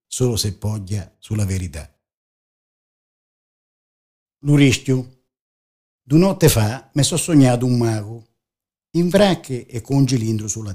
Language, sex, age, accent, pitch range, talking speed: Italian, male, 50-69, native, 95-140 Hz, 115 wpm